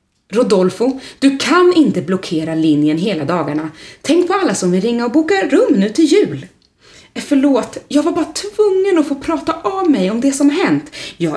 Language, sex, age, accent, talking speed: Swedish, female, 30-49, native, 190 wpm